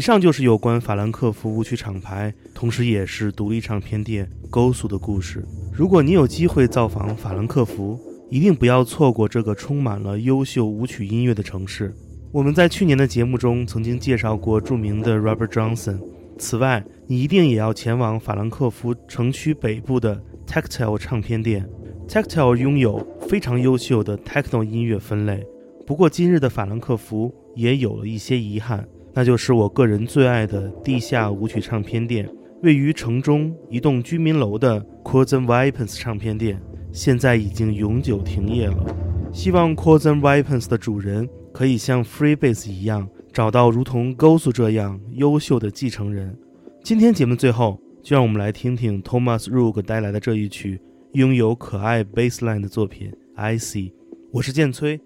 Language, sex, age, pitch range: Chinese, male, 20-39, 105-130 Hz